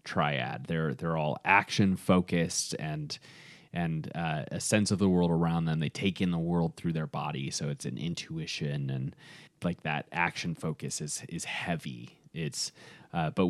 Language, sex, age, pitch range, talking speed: English, male, 20-39, 85-110 Hz, 175 wpm